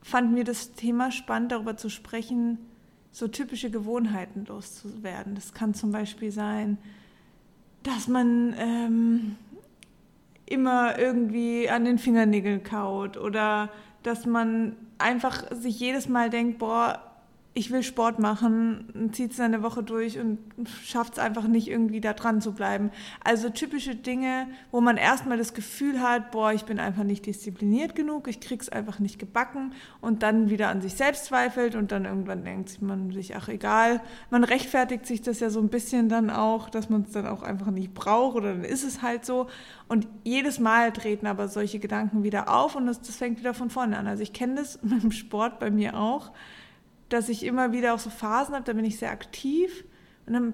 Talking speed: 185 wpm